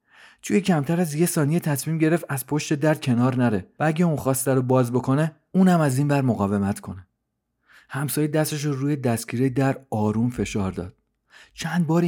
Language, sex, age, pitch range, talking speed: Persian, male, 40-59, 110-150 Hz, 180 wpm